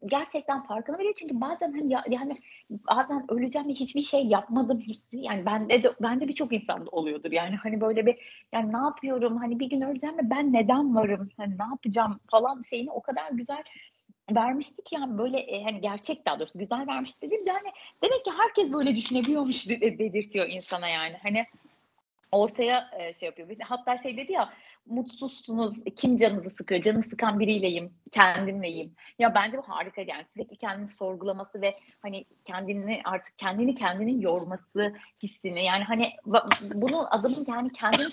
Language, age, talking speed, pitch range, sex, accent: Turkish, 30-49, 155 wpm, 205-270 Hz, female, native